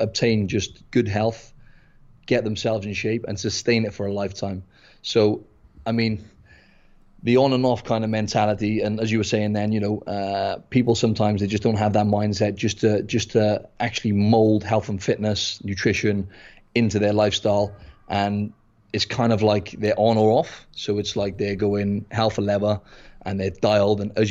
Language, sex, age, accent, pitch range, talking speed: English, male, 30-49, British, 100-115 Hz, 190 wpm